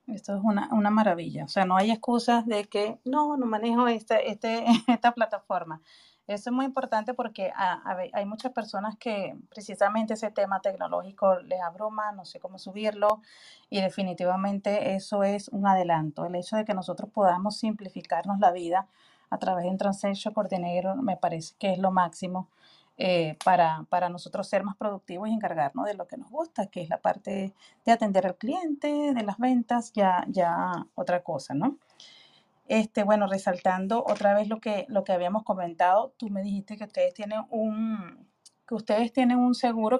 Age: 30-49